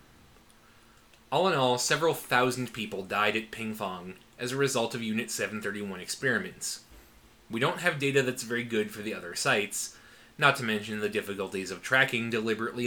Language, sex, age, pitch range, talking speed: English, male, 20-39, 110-135 Hz, 165 wpm